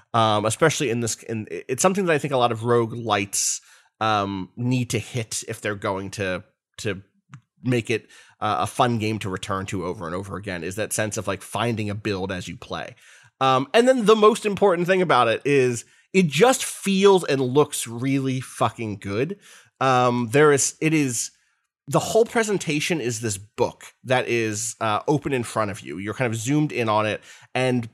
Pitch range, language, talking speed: 110-145 Hz, English, 200 wpm